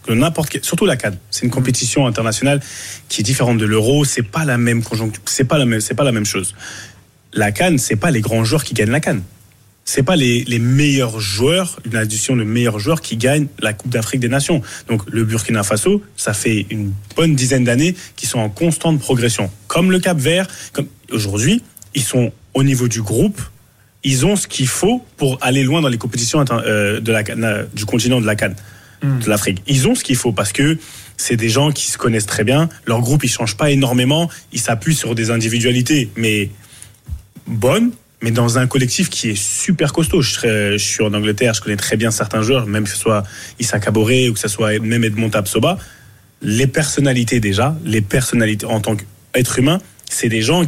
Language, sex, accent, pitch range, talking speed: French, male, French, 110-140 Hz, 205 wpm